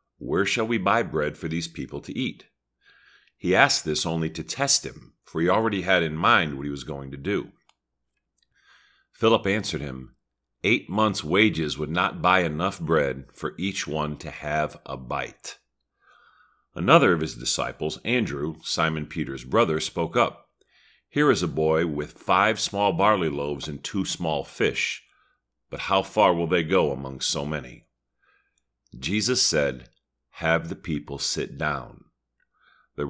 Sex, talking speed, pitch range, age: male, 160 wpm, 70-90 Hz, 50-69